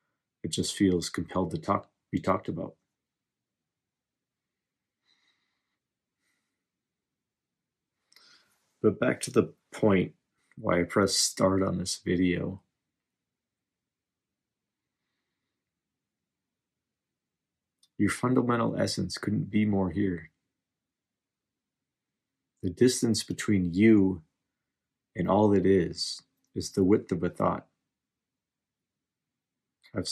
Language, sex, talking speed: English, male, 85 wpm